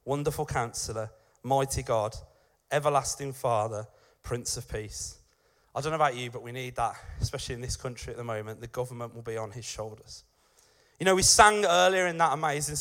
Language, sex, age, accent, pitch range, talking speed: English, male, 30-49, British, 120-155 Hz, 185 wpm